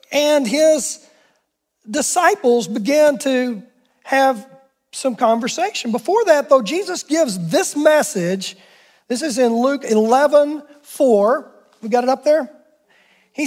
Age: 40-59